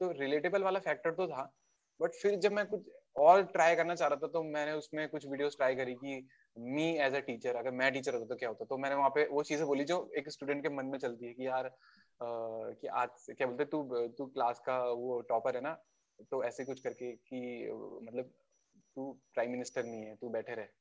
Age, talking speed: 20-39, 140 wpm